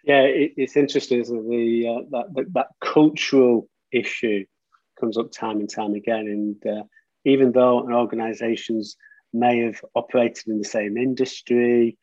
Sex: male